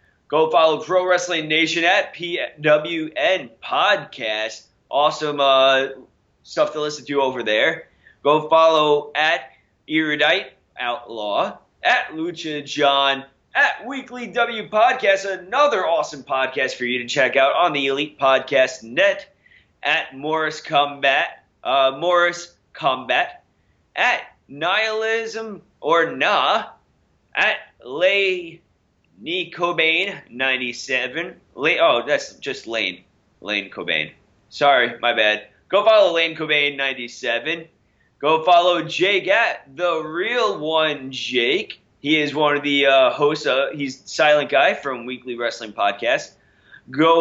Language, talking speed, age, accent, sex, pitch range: English, 120 wpm, 20-39, American, male, 135-175 Hz